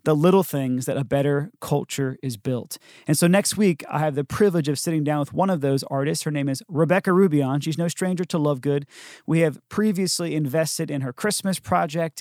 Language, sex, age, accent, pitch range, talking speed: English, male, 30-49, American, 140-170 Hz, 215 wpm